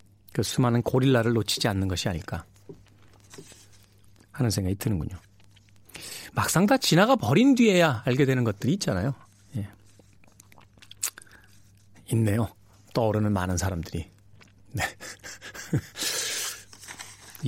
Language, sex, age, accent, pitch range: Korean, male, 40-59, native, 100-140 Hz